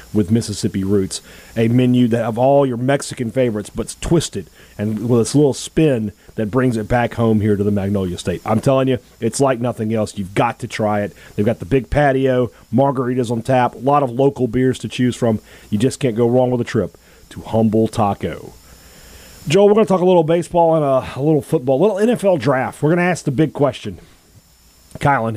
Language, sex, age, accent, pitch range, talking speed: English, male, 30-49, American, 105-140 Hz, 220 wpm